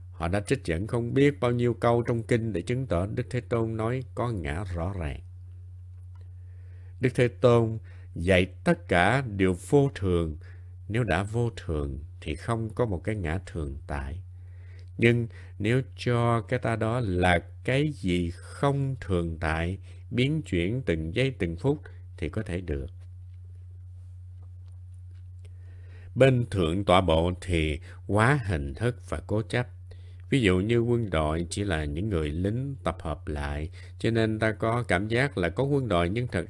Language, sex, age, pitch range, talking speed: Vietnamese, male, 60-79, 90-115 Hz, 165 wpm